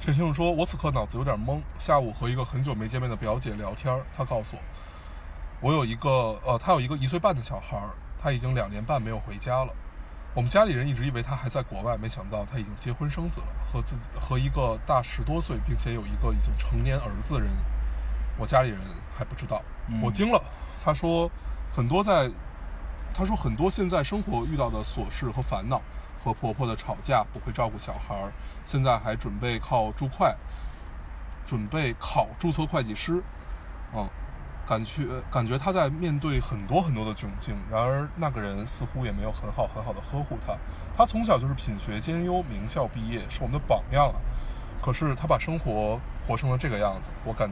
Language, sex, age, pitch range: Chinese, male, 20-39, 105-140 Hz